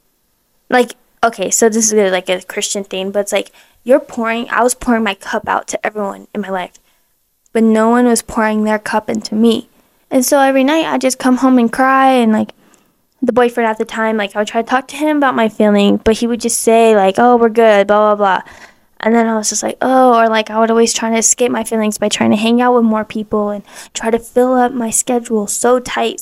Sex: female